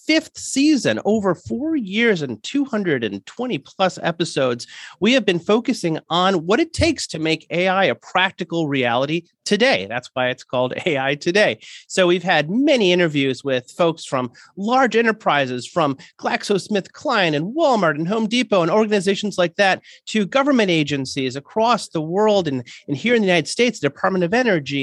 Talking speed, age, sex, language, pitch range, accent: 165 wpm, 30-49, male, English, 145-205 Hz, American